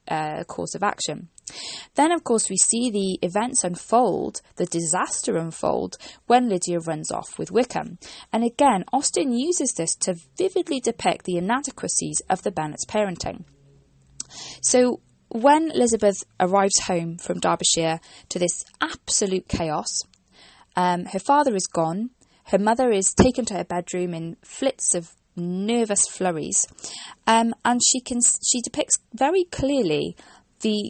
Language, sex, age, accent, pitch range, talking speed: English, female, 20-39, British, 175-240 Hz, 140 wpm